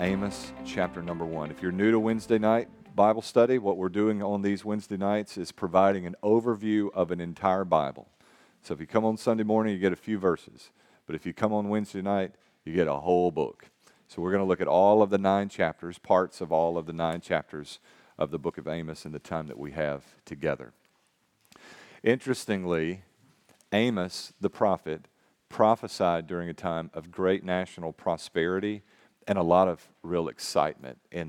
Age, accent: 40-59, American